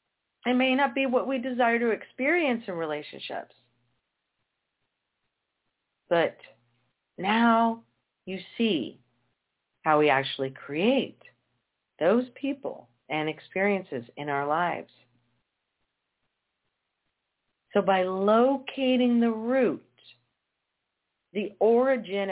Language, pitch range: English, 170-230 Hz